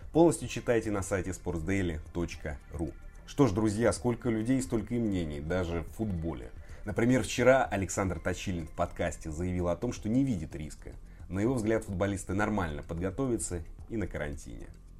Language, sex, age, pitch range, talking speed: Russian, male, 30-49, 85-105 Hz, 150 wpm